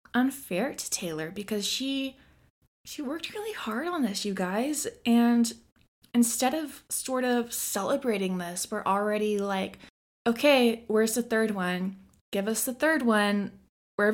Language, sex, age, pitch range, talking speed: English, female, 20-39, 205-260 Hz, 145 wpm